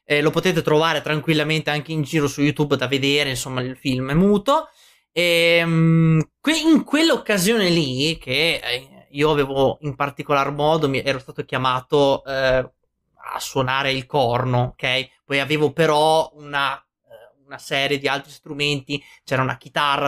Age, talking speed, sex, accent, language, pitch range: 30-49, 145 wpm, male, native, Italian, 140-185 Hz